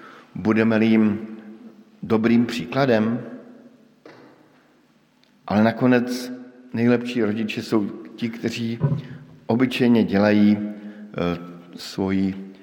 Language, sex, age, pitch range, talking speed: Slovak, male, 50-69, 100-130 Hz, 70 wpm